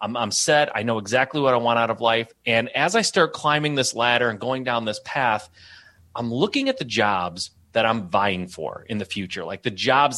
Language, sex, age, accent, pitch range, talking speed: English, male, 30-49, American, 115-170 Hz, 225 wpm